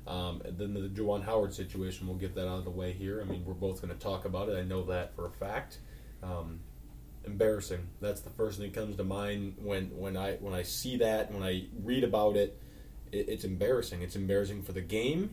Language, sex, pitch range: English, male, 95-120 Hz